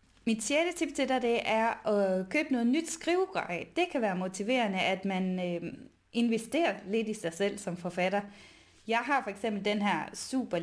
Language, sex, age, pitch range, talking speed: Danish, female, 20-39, 190-245 Hz, 180 wpm